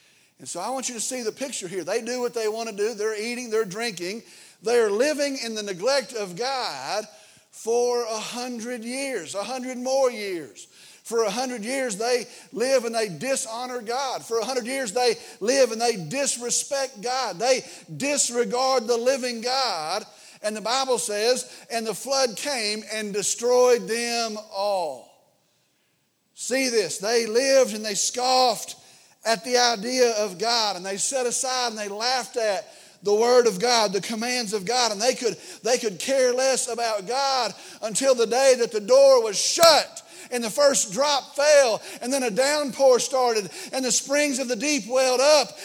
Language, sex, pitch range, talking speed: English, male, 225-265 Hz, 175 wpm